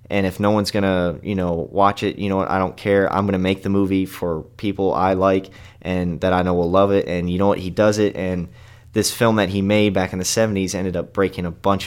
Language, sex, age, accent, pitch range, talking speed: English, male, 20-39, American, 95-110 Hz, 280 wpm